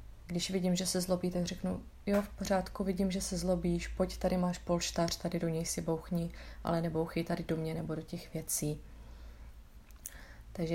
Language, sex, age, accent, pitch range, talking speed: Czech, female, 30-49, native, 160-180 Hz, 185 wpm